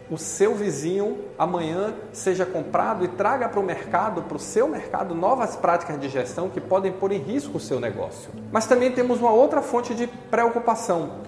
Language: Portuguese